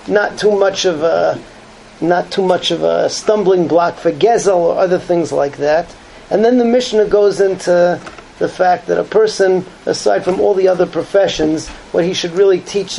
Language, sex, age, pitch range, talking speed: English, male, 40-59, 165-200 Hz, 190 wpm